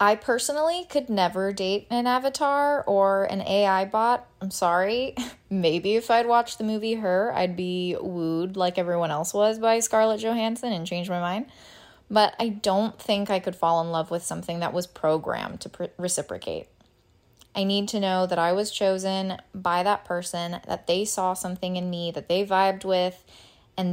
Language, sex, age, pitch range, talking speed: English, female, 20-39, 170-205 Hz, 180 wpm